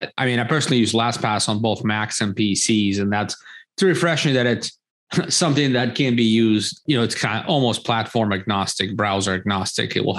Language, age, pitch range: English, 30-49, 105-135 Hz